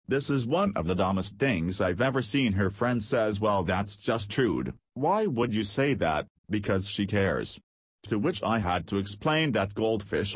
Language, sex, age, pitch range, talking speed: English, male, 40-59, 95-115 Hz, 190 wpm